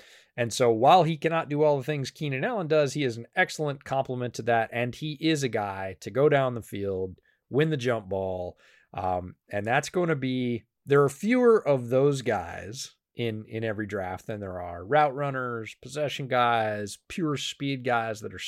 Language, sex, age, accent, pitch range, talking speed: English, male, 30-49, American, 100-135 Hz, 200 wpm